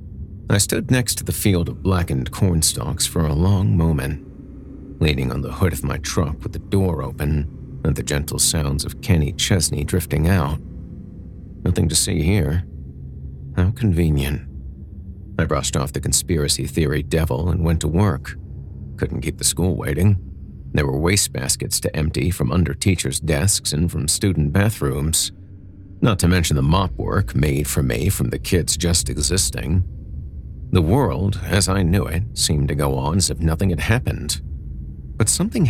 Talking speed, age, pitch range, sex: 170 wpm, 40-59, 75-95 Hz, male